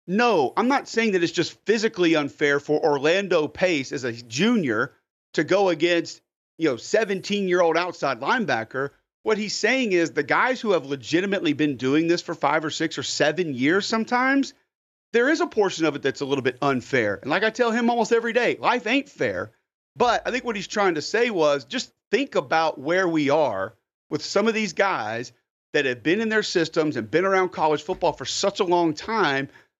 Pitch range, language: 145-205 Hz, English